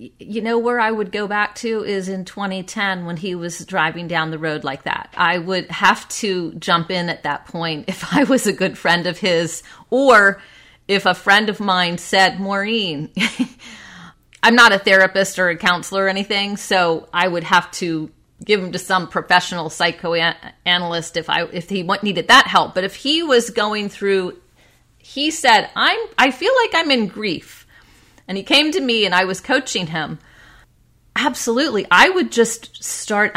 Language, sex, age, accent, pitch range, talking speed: English, female, 30-49, American, 175-215 Hz, 180 wpm